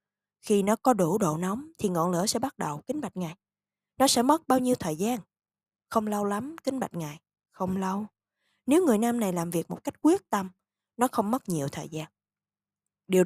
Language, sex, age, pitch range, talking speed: Vietnamese, female, 20-39, 175-255 Hz, 215 wpm